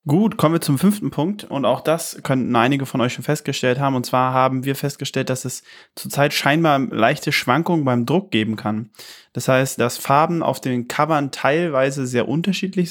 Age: 20-39